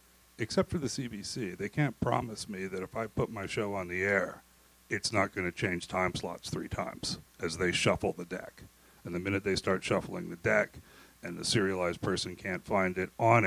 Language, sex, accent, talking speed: English, male, American, 205 wpm